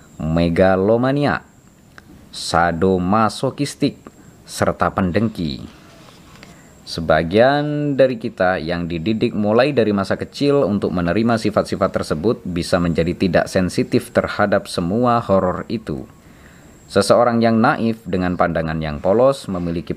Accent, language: native, Indonesian